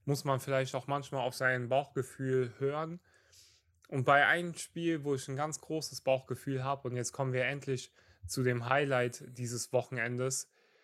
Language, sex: German, male